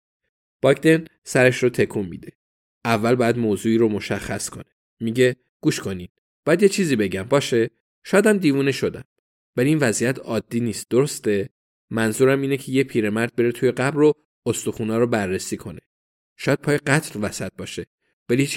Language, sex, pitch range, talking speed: Persian, male, 110-145 Hz, 155 wpm